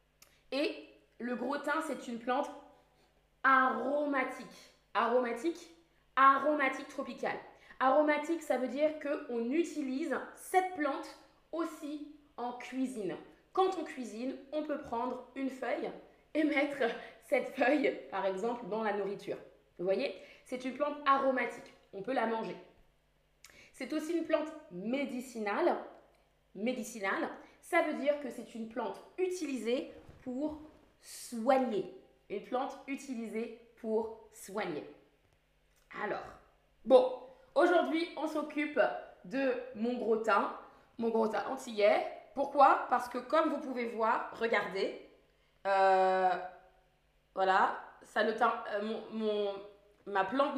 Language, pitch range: French, 225-290 Hz